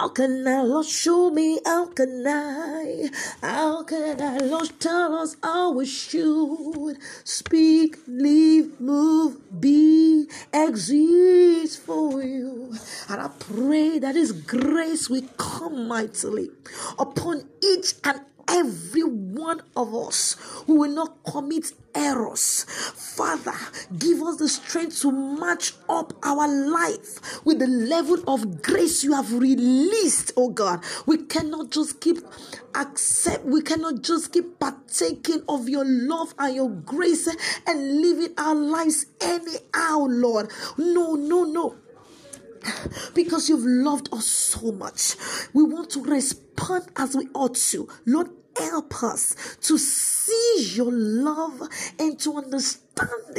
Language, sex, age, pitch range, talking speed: English, female, 40-59, 270-325 Hz, 125 wpm